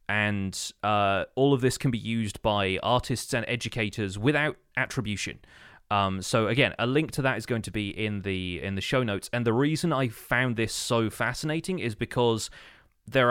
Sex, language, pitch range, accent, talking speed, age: male, English, 105-130 Hz, British, 185 wpm, 20-39